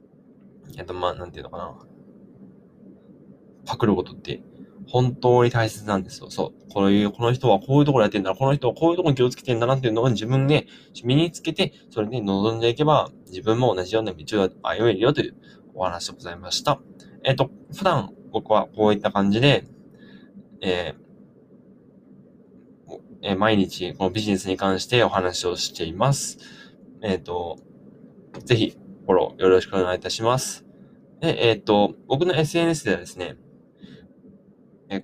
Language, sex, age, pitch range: Japanese, male, 20-39, 100-130 Hz